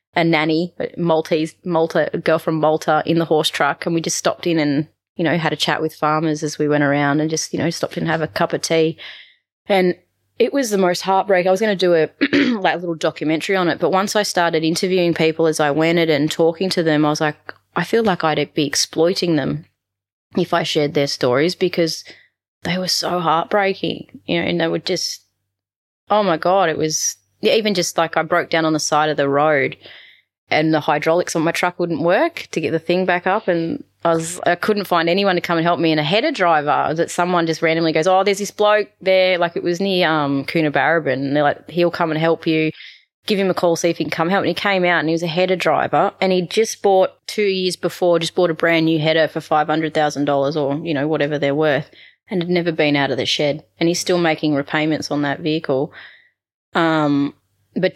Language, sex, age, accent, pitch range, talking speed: English, female, 20-39, Australian, 155-180 Hz, 240 wpm